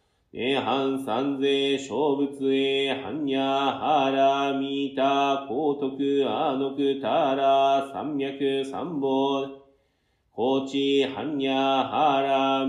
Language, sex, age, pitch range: Japanese, male, 40-59, 135-140 Hz